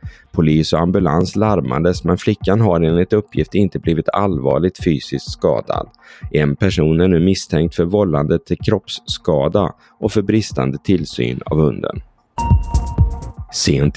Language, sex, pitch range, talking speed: Swedish, male, 75-100 Hz, 130 wpm